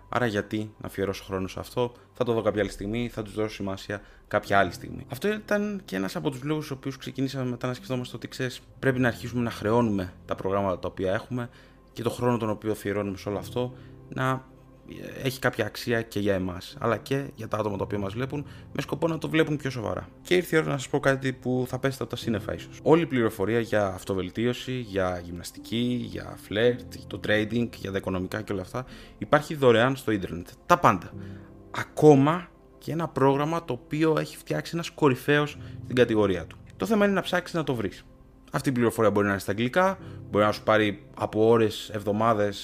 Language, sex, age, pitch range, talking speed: Greek, male, 20-39, 105-135 Hz, 215 wpm